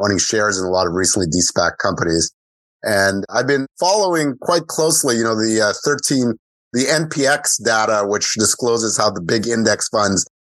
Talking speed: 170 wpm